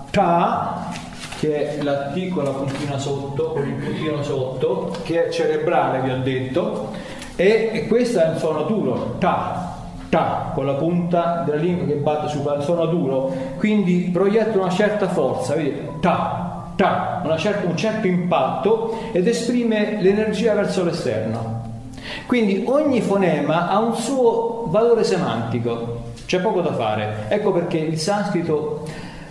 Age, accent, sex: 40-59, native, male